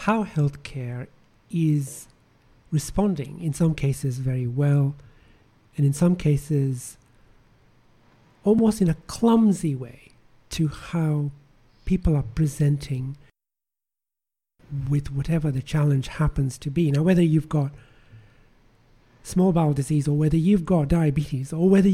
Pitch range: 135-165 Hz